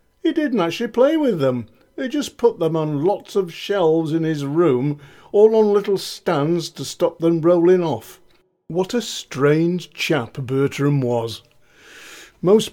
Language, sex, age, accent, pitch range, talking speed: English, male, 50-69, British, 130-190 Hz, 155 wpm